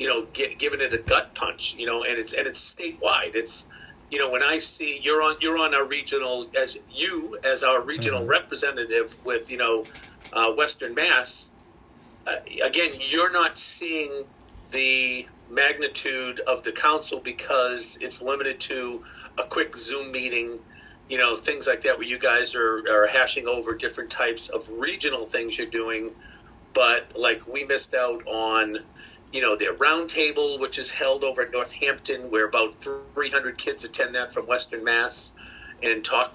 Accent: American